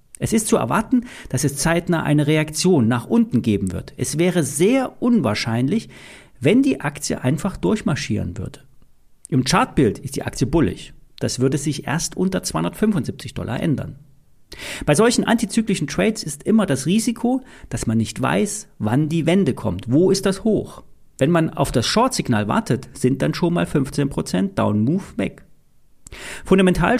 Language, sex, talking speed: German, male, 160 wpm